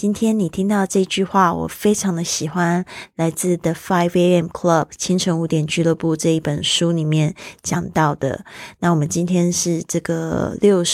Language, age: Chinese, 20-39